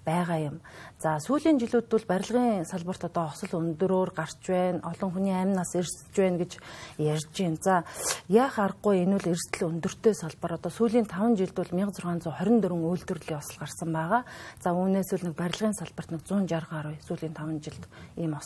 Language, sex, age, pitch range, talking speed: English, female, 40-59, 165-195 Hz, 155 wpm